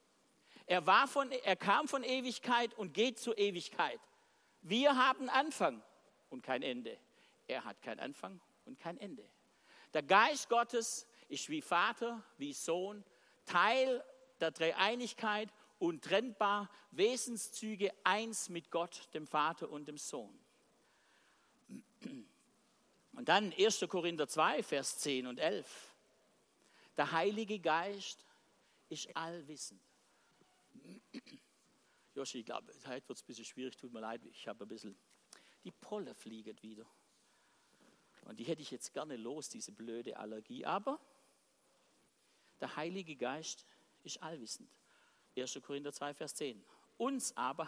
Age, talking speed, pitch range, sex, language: 50-69, 130 wpm, 155-240 Hz, male, German